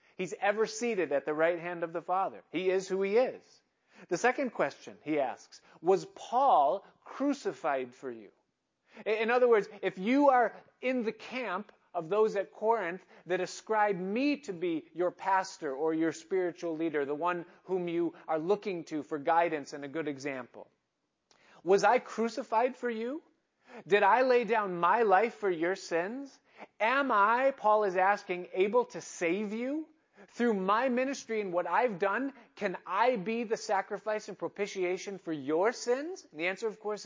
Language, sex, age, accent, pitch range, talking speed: English, male, 40-59, American, 165-225 Hz, 170 wpm